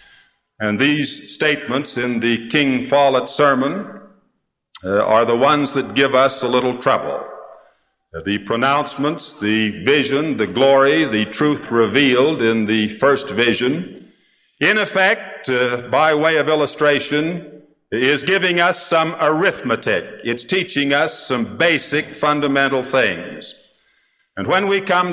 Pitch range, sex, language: 135-170 Hz, male, English